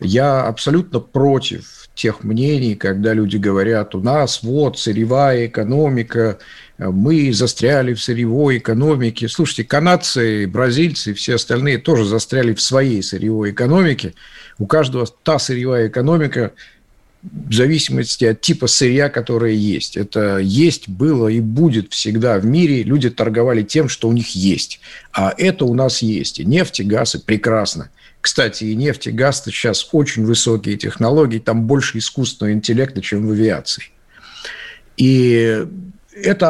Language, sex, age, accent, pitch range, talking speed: Russian, male, 50-69, native, 110-145 Hz, 140 wpm